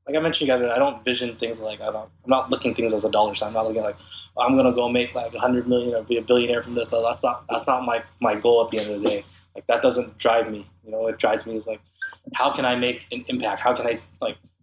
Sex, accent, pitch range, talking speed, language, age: male, American, 100-120 Hz, 320 wpm, English, 20-39